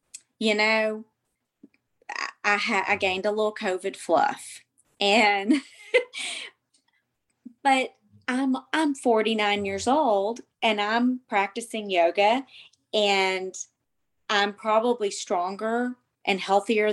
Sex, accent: female, American